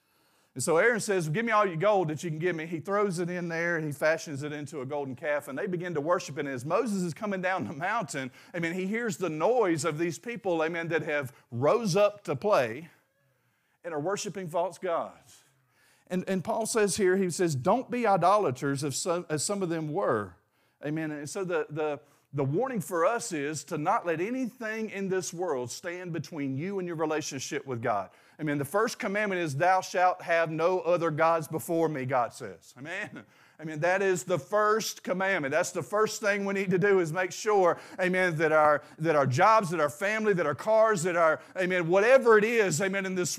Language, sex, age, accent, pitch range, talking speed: English, male, 40-59, American, 155-200 Hz, 220 wpm